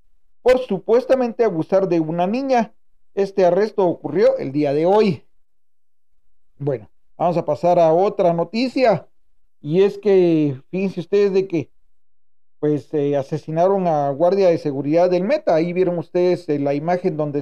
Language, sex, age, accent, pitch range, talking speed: Spanish, male, 40-59, Mexican, 150-195 Hz, 150 wpm